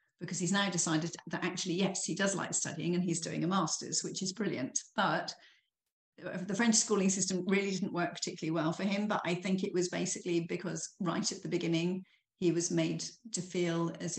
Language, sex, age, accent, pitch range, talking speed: English, female, 50-69, British, 170-195 Hz, 205 wpm